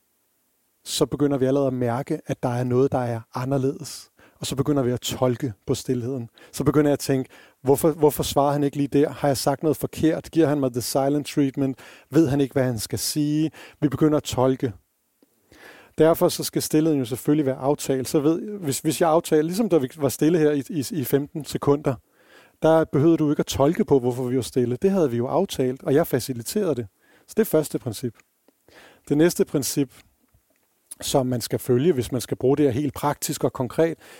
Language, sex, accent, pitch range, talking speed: Danish, male, native, 130-155 Hz, 215 wpm